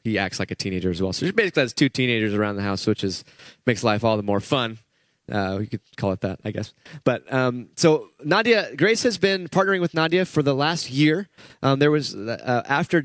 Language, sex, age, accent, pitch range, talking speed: English, male, 20-39, American, 120-150 Hz, 235 wpm